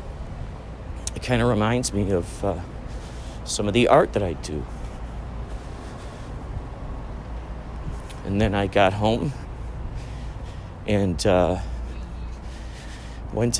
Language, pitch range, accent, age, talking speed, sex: English, 80-115 Hz, American, 40-59, 95 wpm, male